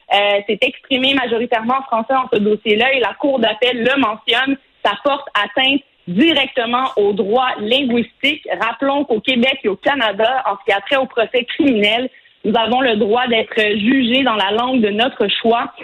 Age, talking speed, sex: 30-49, 180 wpm, female